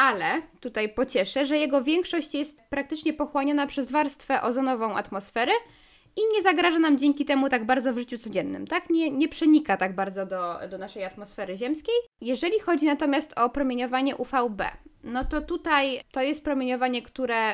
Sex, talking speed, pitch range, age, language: female, 165 wpm, 230-285 Hz, 20-39, Polish